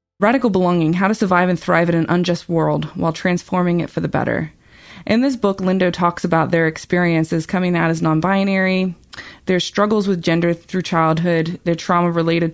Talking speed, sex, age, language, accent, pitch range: 180 wpm, female, 20-39, English, American, 165-190 Hz